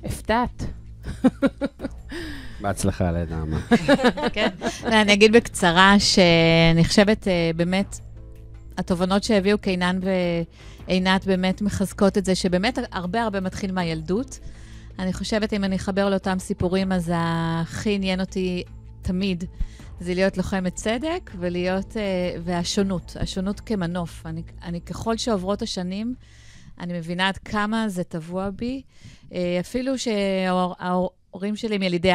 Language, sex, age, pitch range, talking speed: Hebrew, female, 30-49, 170-205 Hz, 110 wpm